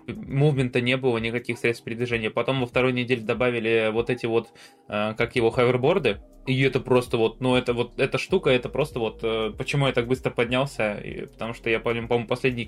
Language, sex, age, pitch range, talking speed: Russian, male, 20-39, 115-135 Hz, 205 wpm